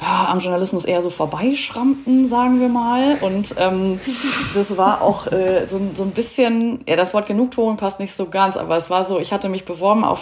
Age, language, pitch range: 30-49, German, 185-235 Hz